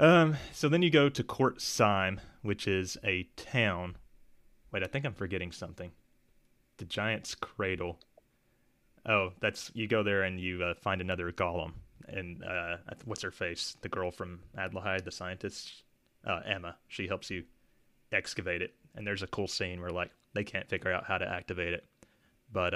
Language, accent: English, American